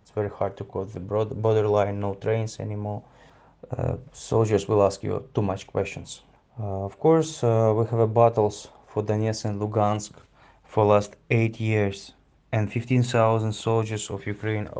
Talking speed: 160 wpm